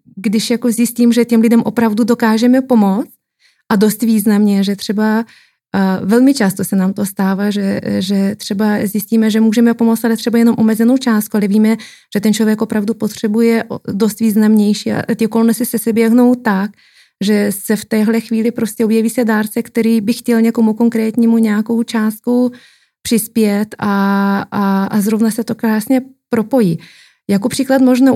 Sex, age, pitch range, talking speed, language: female, 20-39, 210-235 Hz, 160 wpm, Czech